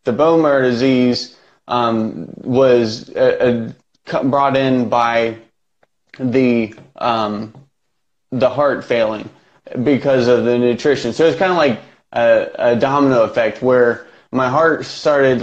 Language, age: Telugu, 20-39